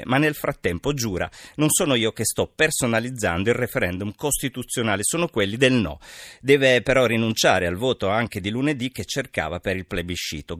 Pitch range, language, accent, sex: 95-135 Hz, Italian, native, male